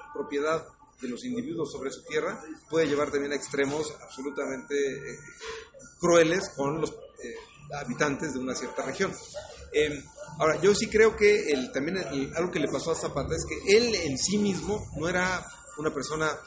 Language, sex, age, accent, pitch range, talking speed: Spanish, male, 40-59, Mexican, 140-195 Hz, 180 wpm